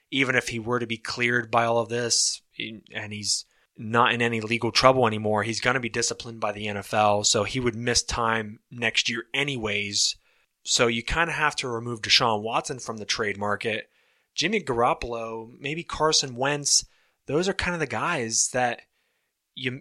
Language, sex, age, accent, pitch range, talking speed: English, male, 20-39, American, 110-130 Hz, 185 wpm